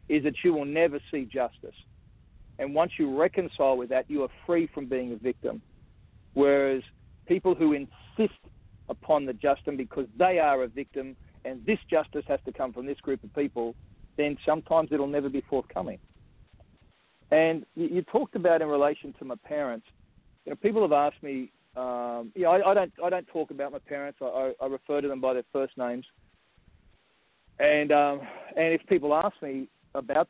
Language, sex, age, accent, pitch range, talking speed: English, male, 40-59, Australian, 125-160 Hz, 190 wpm